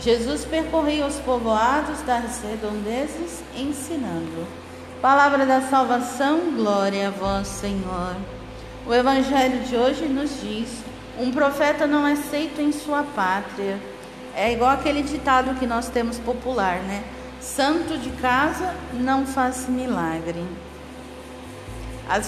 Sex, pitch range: female, 215-275 Hz